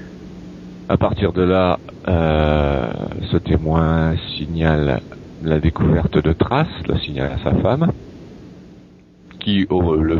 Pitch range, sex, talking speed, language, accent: 75-90 Hz, male, 120 wpm, French, French